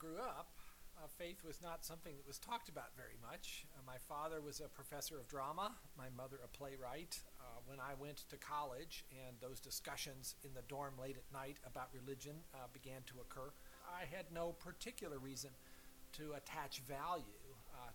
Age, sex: 50-69, male